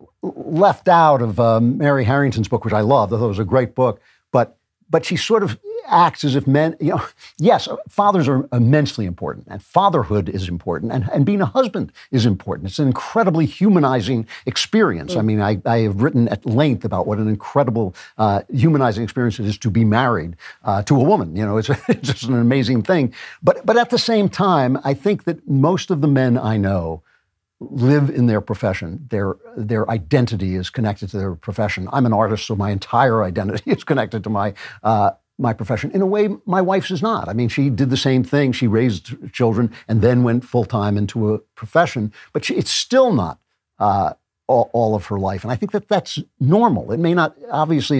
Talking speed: 210 wpm